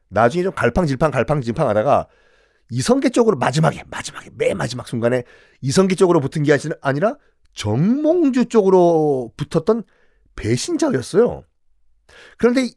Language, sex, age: Korean, male, 40-59